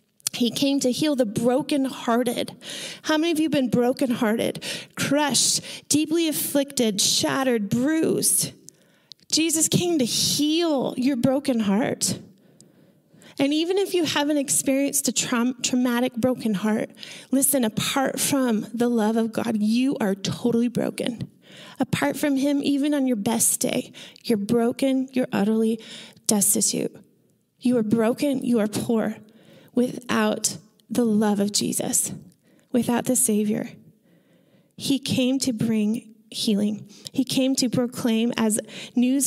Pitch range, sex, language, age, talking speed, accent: 215-270 Hz, female, English, 20-39, 130 wpm, American